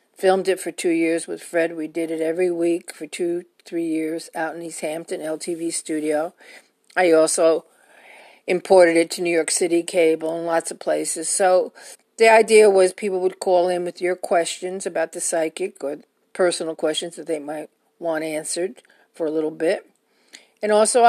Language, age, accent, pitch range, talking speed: English, 50-69, American, 165-195 Hz, 180 wpm